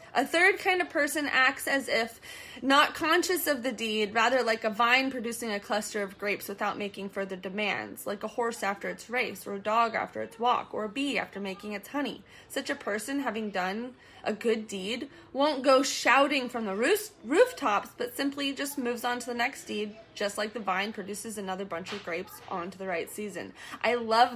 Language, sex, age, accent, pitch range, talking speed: English, female, 20-39, American, 200-245 Hz, 205 wpm